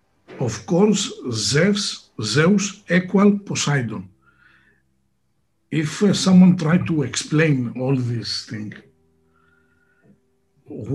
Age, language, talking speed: 60-79, Greek, 90 wpm